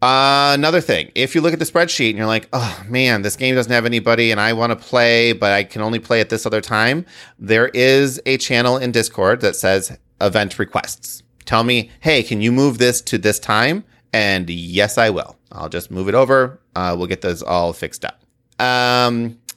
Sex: male